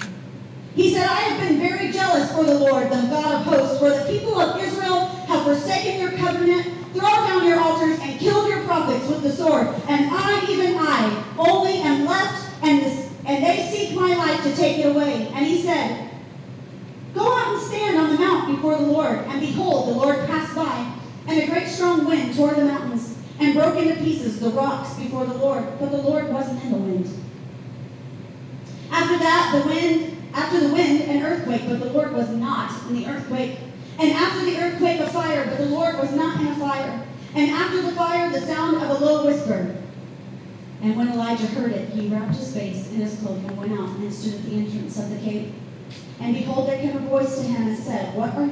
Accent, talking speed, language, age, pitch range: American, 210 wpm, English, 40-59, 255-330 Hz